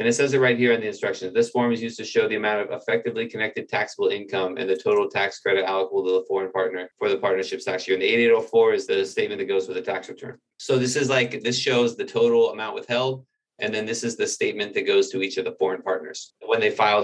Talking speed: 270 wpm